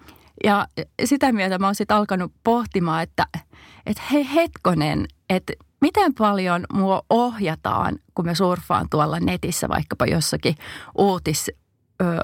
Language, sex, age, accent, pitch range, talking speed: Finnish, female, 30-49, native, 170-230 Hz, 125 wpm